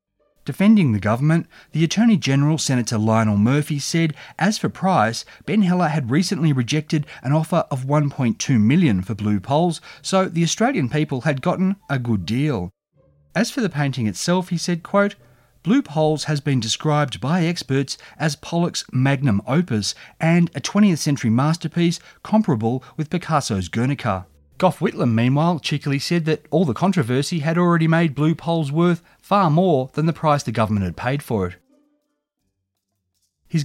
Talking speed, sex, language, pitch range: 160 wpm, male, English, 120-175 Hz